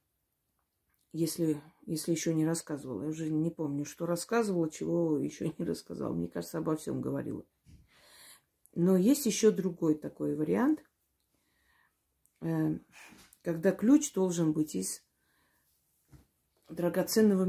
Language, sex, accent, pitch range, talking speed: Russian, female, native, 155-205 Hz, 110 wpm